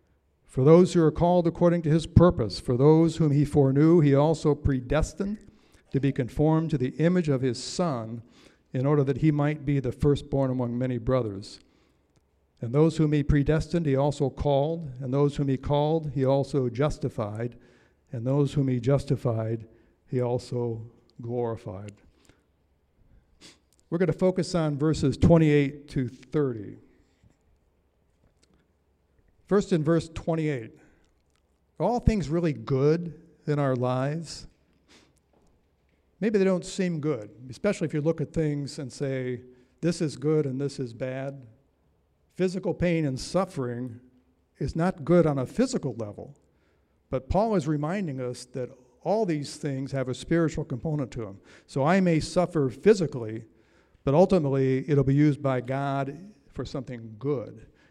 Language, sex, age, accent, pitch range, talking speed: English, male, 60-79, American, 120-155 Hz, 150 wpm